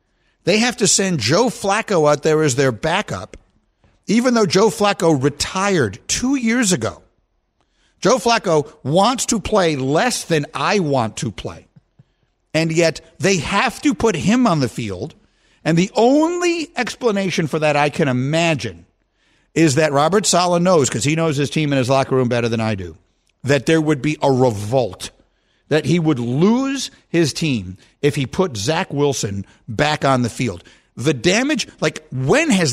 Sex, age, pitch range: male, 50-69, 135-205 Hz